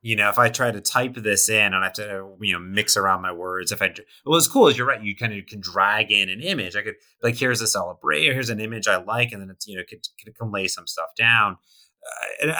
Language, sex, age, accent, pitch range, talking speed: English, male, 30-49, American, 90-110 Hz, 280 wpm